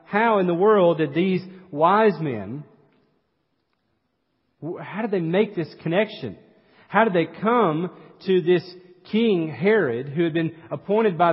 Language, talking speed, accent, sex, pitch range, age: English, 145 wpm, American, male, 150-205 Hz, 40-59